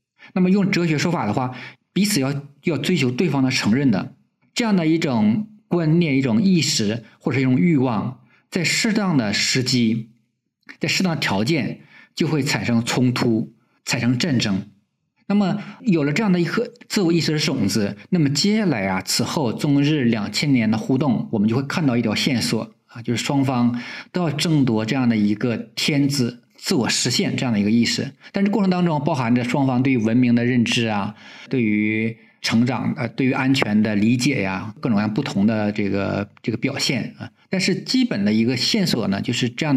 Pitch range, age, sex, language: 110-170 Hz, 50-69, male, Chinese